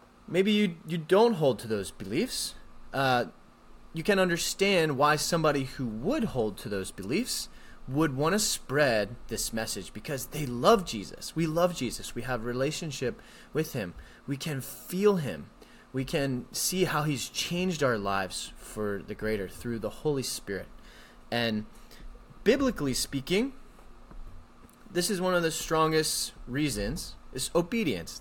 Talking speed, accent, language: 150 wpm, American, English